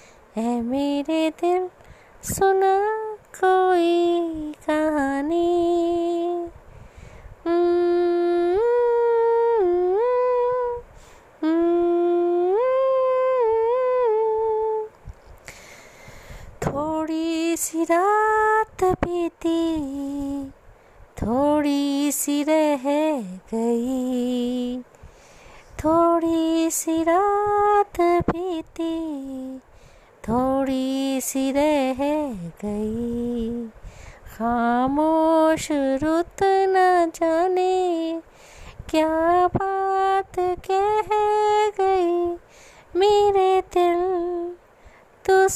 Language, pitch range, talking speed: Hindi, 295-375 Hz, 40 wpm